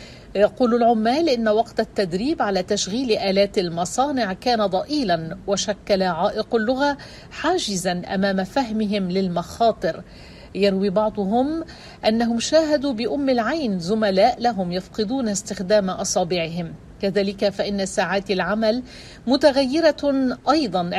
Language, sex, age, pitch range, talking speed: Arabic, female, 50-69, 195-250 Hz, 100 wpm